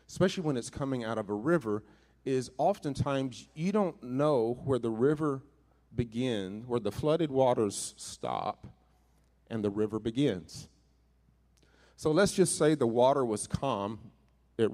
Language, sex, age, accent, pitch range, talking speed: English, male, 40-59, American, 105-140 Hz, 145 wpm